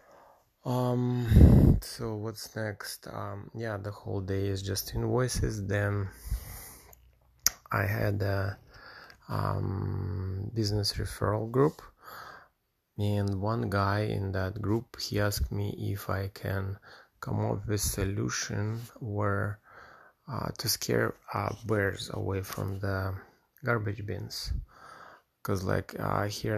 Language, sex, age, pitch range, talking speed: English, male, 20-39, 95-110 Hz, 115 wpm